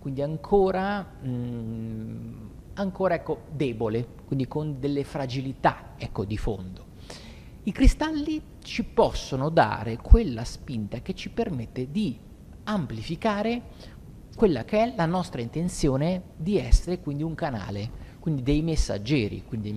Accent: native